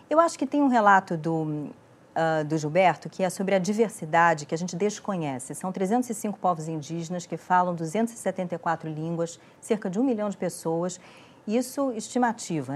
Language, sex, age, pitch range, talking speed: Portuguese, female, 40-59, 155-210 Hz, 165 wpm